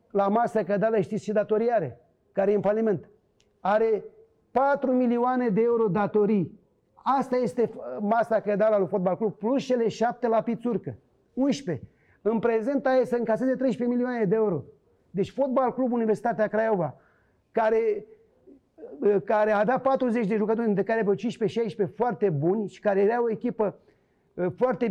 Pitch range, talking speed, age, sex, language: 195-235 Hz, 145 wpm, 40-59, male, Romanian